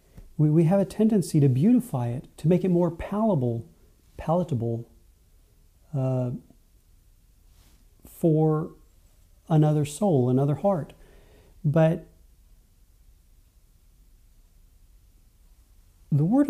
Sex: male